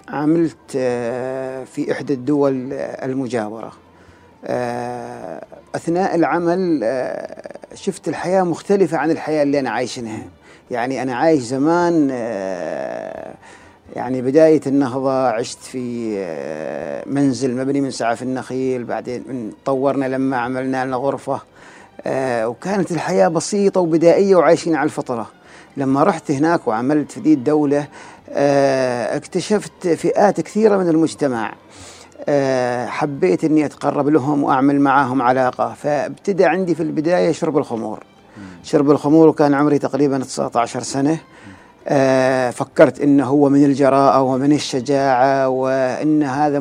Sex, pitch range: male, 130-160 Hz